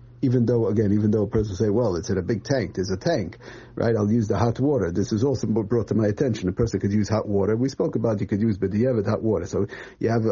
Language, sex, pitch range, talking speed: English, male, 105-125 Hz, 300 wpm